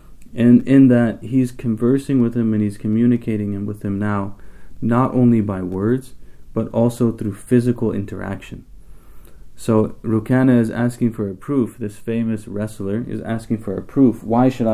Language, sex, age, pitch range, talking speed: English, male, 20-39, 105-120 Hz, 160 wpm